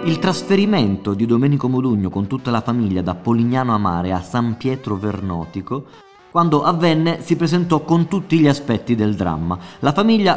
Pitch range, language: 105-150 Hz, Italian